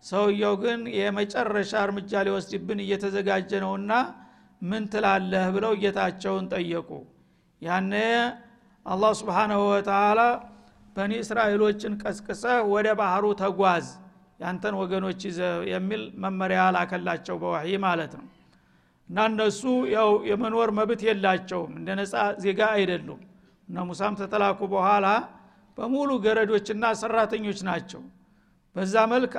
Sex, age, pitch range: male, 50-69, 190-215 Hz